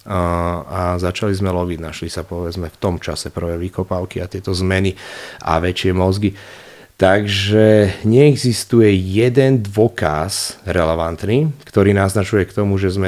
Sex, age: male, 30-49